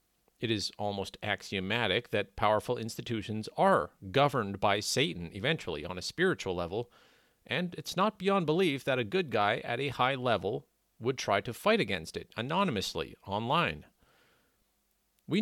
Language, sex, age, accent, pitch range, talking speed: English, male, 40-59, American, 110-170 Hz, 150 wpm